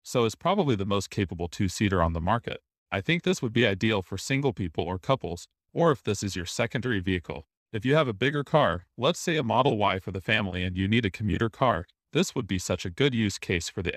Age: 40-59